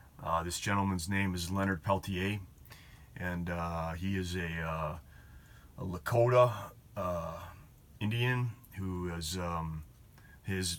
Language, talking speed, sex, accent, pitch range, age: English, 115 wpm, male, American, 80-100 Hz, 30-49